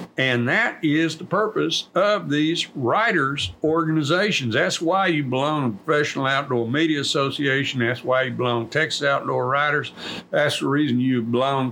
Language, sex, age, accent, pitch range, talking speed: English, male, 60-79, American, 120-160 Hz, 160 wpm